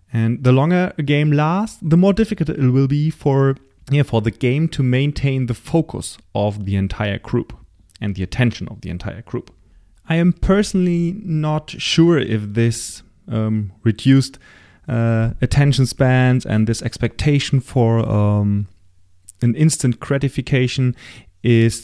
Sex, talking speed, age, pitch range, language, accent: male, 150 wpm, 30-49, 105-145 Hz, English, German